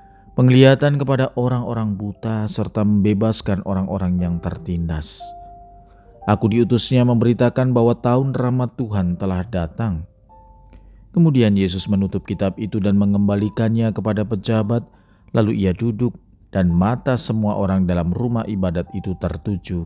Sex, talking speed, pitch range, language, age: male, 120 wpm, 95-120 Hz, Indonesian, 40-59